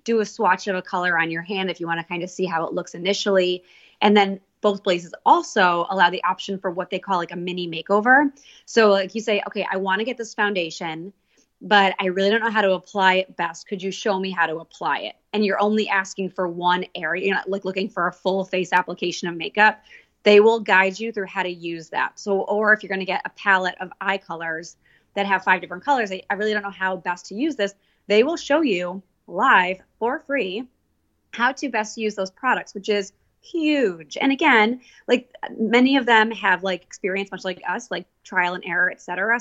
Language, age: English, 20-39